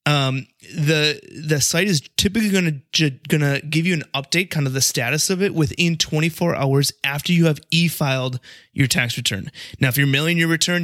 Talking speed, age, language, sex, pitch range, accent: 195 wpm, 30-49, English, male, 130-160 Hz, American